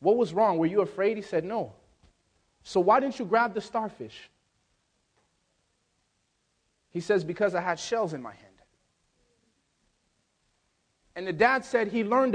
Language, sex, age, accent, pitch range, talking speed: English, male, 30-49, American, 180-250 Hz, 150 wpm